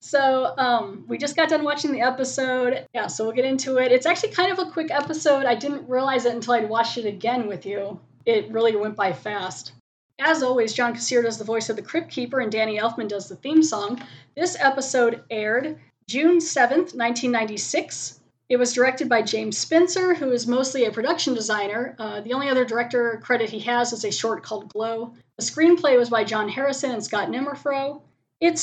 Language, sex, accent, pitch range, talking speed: English, female, American, 215-265 Hz, 205 wpm